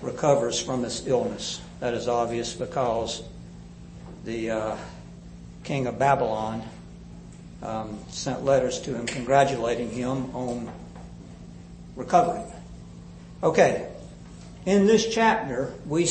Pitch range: 120-155 Hz